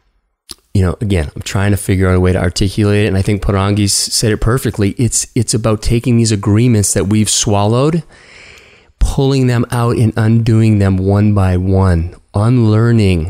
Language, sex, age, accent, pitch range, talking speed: English, male, 30-49, American, 100-135 Hz, 175 wpm